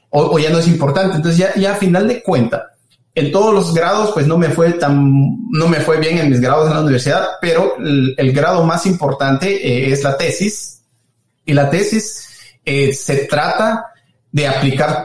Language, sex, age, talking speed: Spanish, male, 30-49, 200 wpm